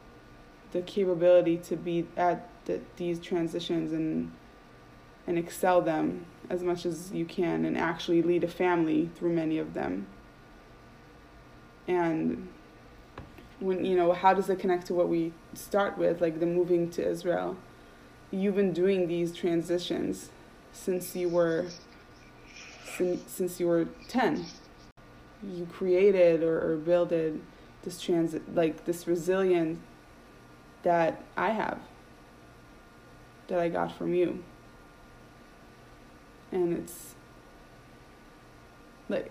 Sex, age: female, 20-39